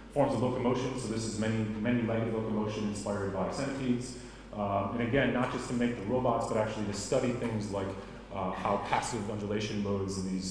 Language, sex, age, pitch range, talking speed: German, male, 30-49, 95-110 Hz, 200 wpm